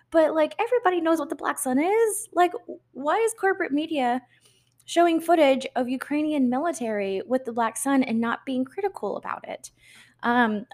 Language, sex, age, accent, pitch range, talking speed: English, female, 20-39, American, 185-265 Hz, 170 wpm